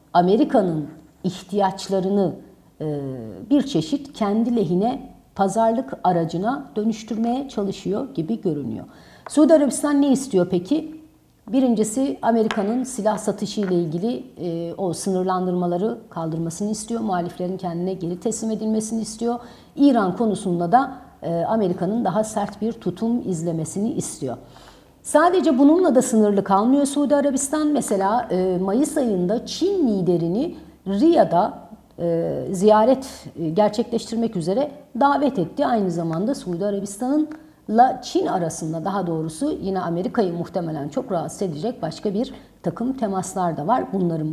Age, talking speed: 60-79, 110 wpm